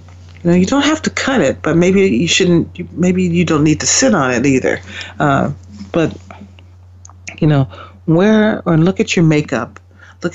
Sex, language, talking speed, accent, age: female, English, 175 wpm, American, 60-79